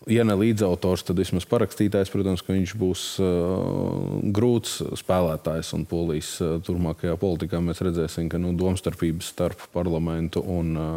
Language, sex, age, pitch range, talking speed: English, male, 20-39, 85-100 Hz, 150 wpm